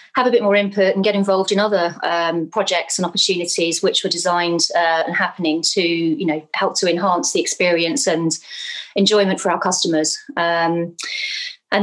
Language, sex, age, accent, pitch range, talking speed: English, female, 30-49, British, 180-230 Hz, 170 wpm